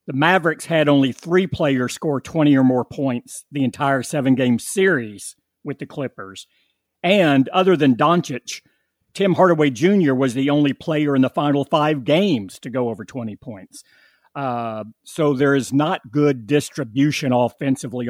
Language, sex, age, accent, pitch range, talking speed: English, male, 50-69, American, 125-155 Hz, 155 wpm